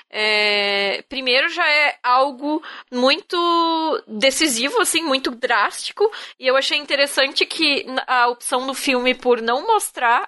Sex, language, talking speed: female, Portuguese, 130 wpm